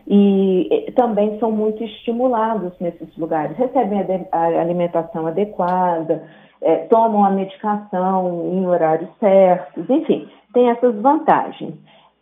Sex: female